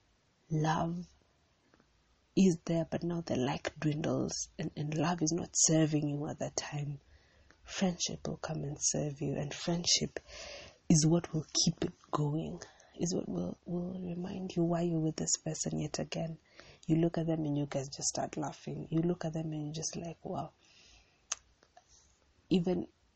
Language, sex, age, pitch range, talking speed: English, female, 30-49, 140-170 Hz, 170 wpm